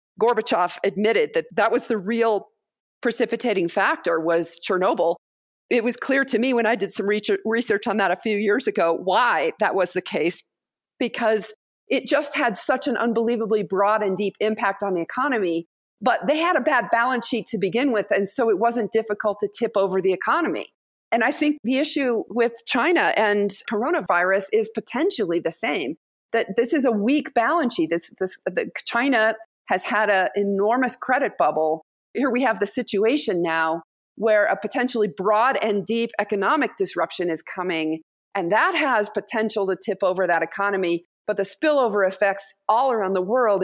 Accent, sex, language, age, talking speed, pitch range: American, female, English, 40-59, 175 wpm, 195-235 Hz